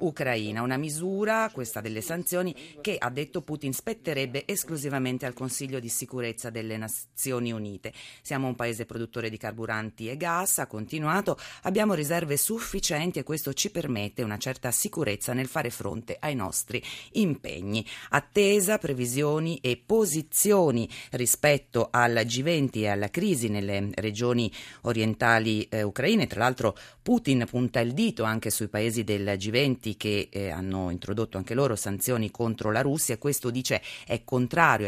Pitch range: 110-150 Hz